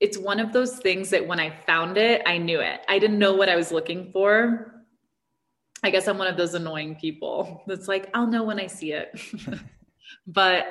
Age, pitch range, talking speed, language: 20-39, 160-215 Hz, 215 wpm, English